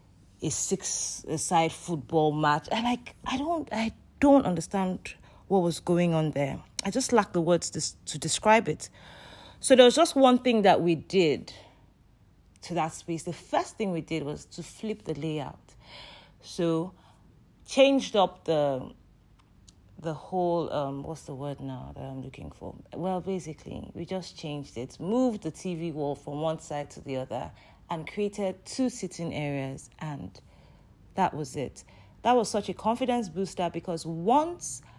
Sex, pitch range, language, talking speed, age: female, 150-200 Hz, English, 165 wpm, 30-49